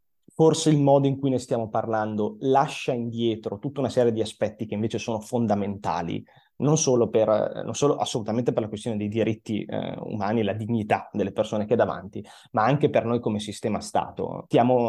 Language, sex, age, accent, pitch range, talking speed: Italian, male, 20-39, native, 105-135 Hz, 195 wpm